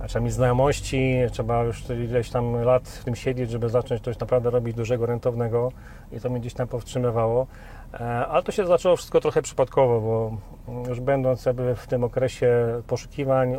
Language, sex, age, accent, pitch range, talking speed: Polish, male, 40-59, native, 115-130 Hz, 165 wpm